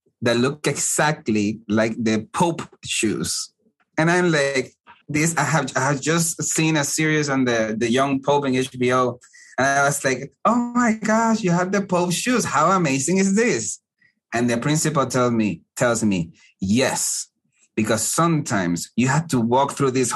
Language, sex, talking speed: English, male, 175 wpm